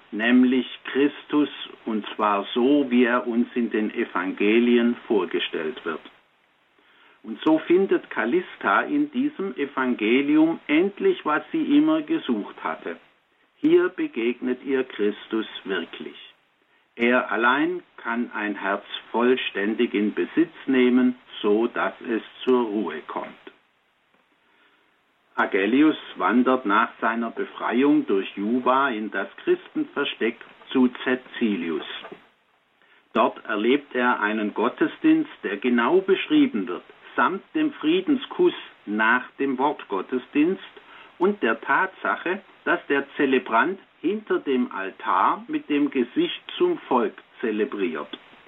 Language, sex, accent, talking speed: German, male, German, 110 wpm